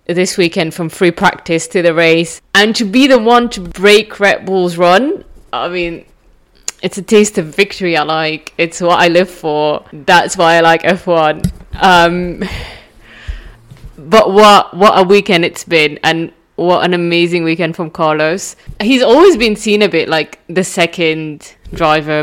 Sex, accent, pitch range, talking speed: female, British, 165-200 Hz, 165 wpm